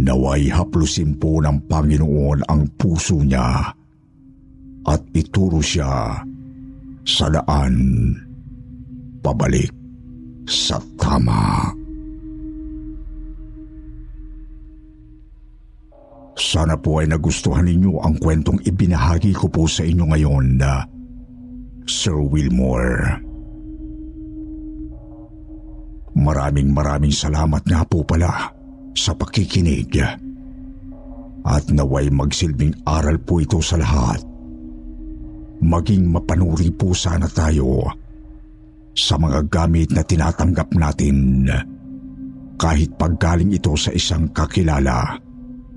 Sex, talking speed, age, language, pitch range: male, 85 wpm, 60-79, Filipino, 75-115 Hz